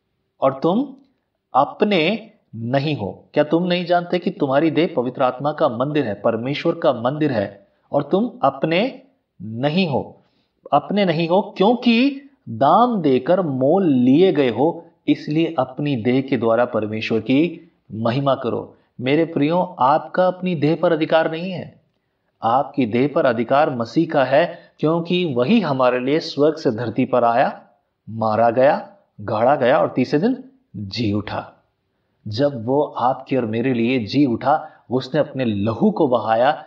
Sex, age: male, 30-49